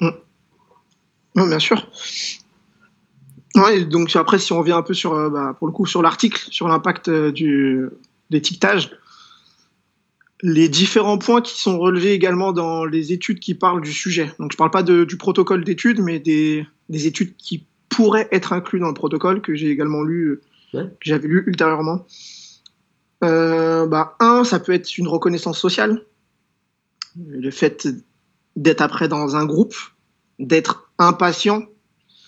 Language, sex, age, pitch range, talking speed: French, male, 20-39, 155-195 Hz, 160 wpm